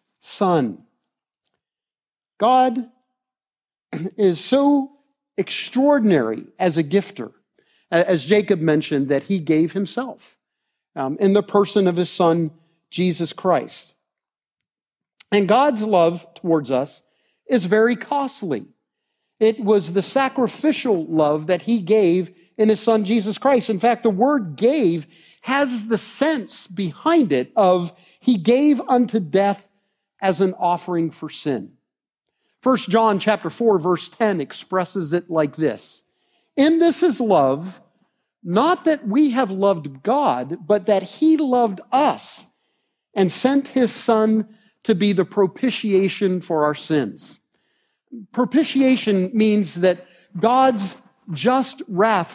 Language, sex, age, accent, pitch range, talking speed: English, male, 50-69, American, 175-240 Hz, 120 wpm